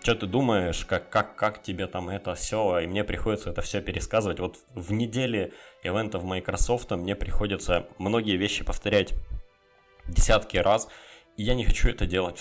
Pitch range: 90-105 Hz